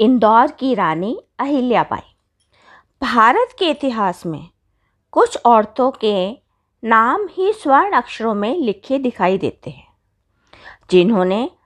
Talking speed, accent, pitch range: 110 wpm, native, 180-295 Hz